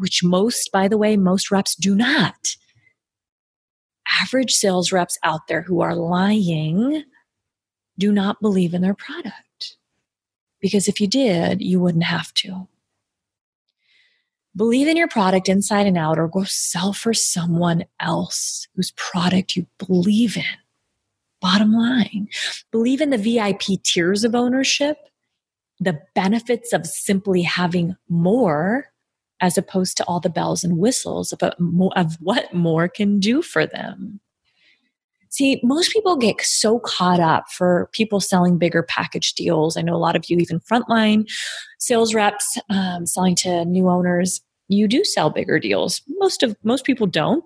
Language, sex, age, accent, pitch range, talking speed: English, female, 30-49, American, 180-230 Hz, 150 wpm